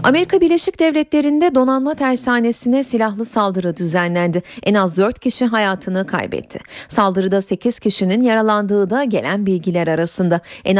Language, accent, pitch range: Turkish, native, 190-265 Hz